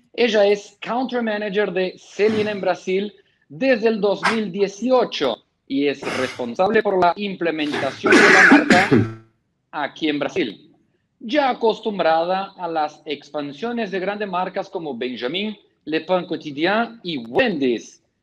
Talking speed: 125 wpm